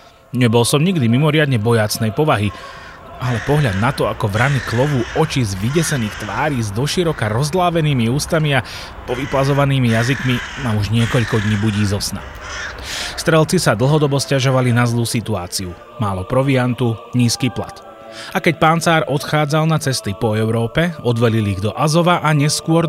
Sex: male